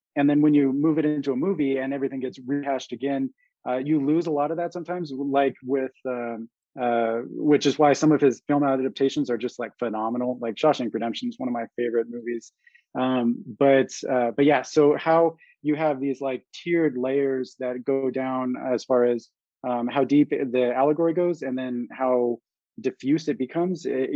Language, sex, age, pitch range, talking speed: English, male, 20-39, 125-150 Hz, 195 wpm